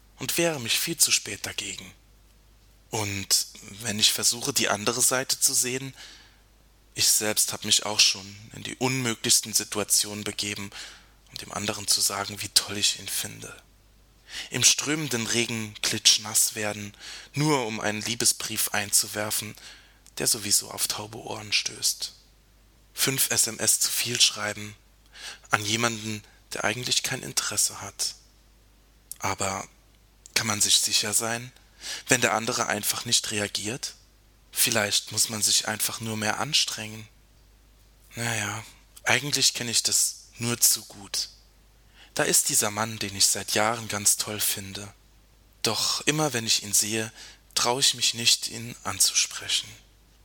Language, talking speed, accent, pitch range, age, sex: German, 140 wpm, German, 100-115 Hz, 20-39, male